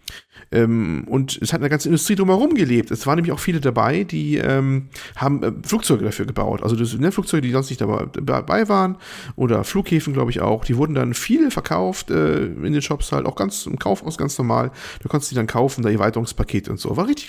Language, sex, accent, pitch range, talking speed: German, male, German, 125-170 Hz, 220 wpm